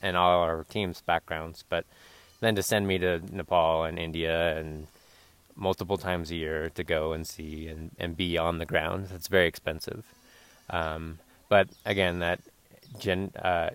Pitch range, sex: 85-100 Hz, male